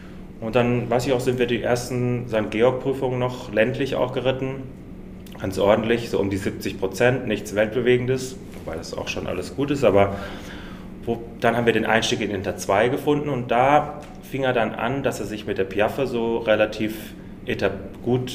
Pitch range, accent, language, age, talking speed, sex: 100-125 Hz, German, German, 30-49, 190 wpm, male